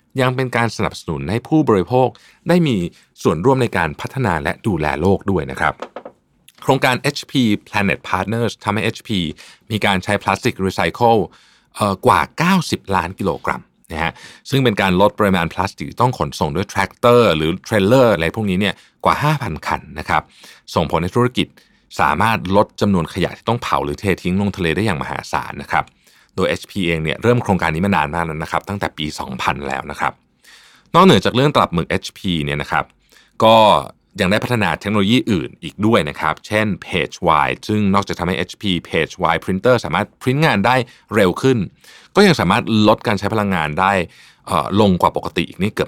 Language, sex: Thai, male